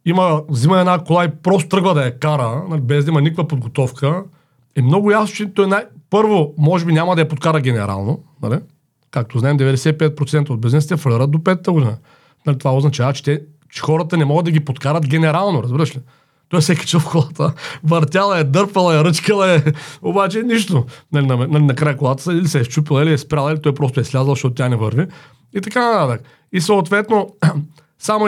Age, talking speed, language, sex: 40-59, 200 wpm, Bulgarian, male